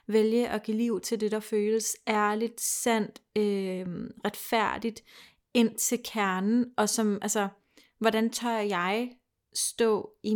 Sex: female